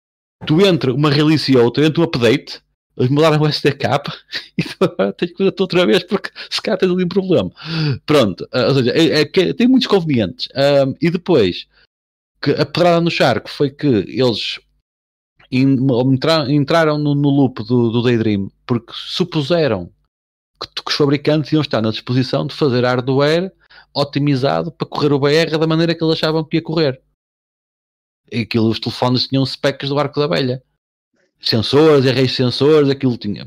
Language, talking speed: Portuguese, 170 wpm